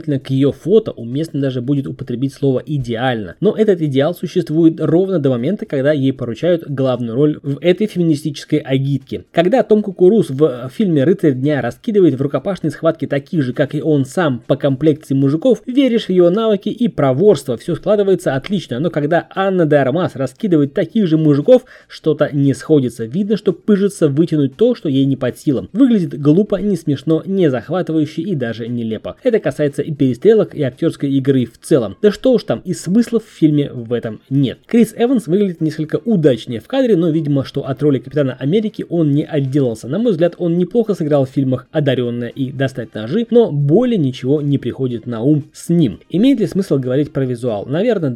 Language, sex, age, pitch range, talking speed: Russian, male, 20-39, 135-185 Hz, 185 wpm